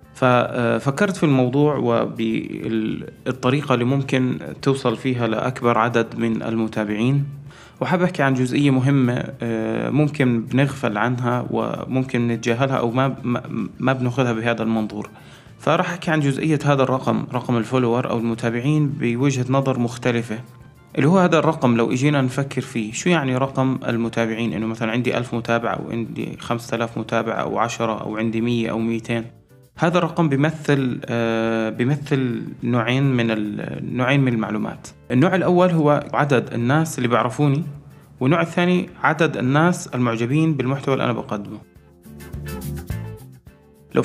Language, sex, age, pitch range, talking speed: Arabic, male, 20-39, 115-150 Hz, 130 wpm